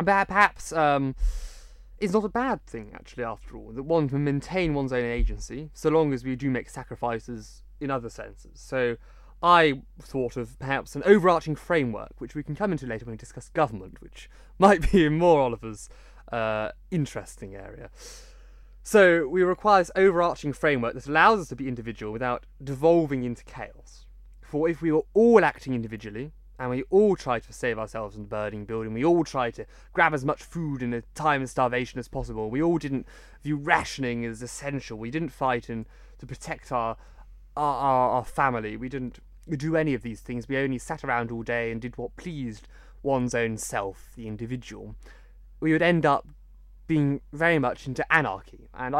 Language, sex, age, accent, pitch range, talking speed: English, male, 20-39, British, 120-160 Hz, 185 wpm